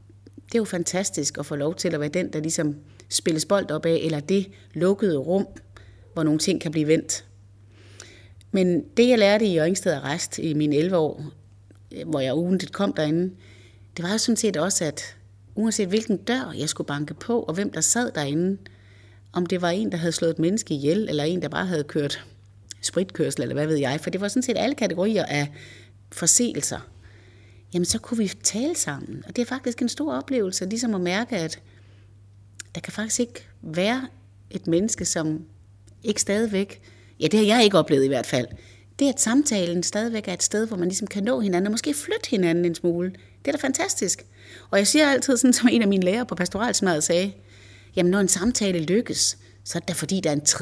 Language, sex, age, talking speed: Danish, female, 30-49, 210 wpm